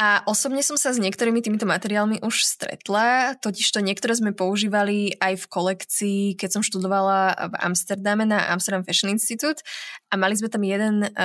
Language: Slovak